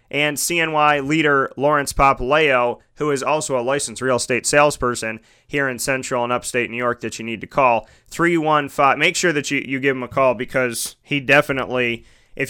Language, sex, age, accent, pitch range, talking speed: English, male, 30-49, American, 125-150 Hz, 185 wpm